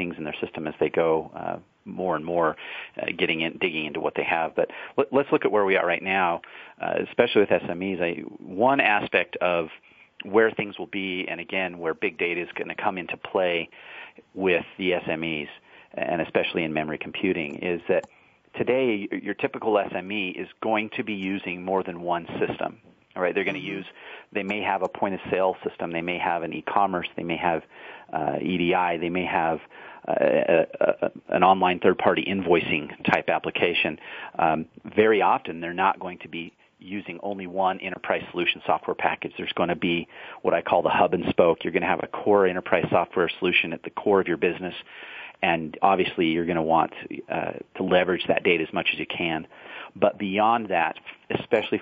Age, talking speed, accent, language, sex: 40-59, 195 wpm, American, English, male